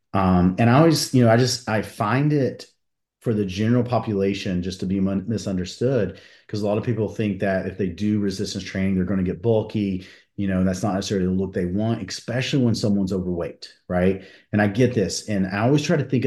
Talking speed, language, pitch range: 220 wpm, English, 95-115 Hz